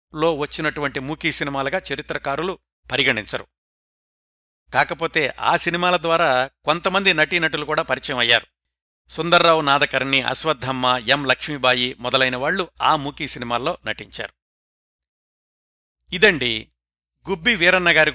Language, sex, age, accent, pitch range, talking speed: Telugu, male, 60-79, native, 125-165 Hz, 95 wpm